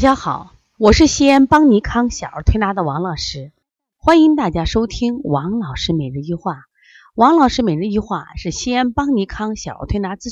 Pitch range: 160-260 Hz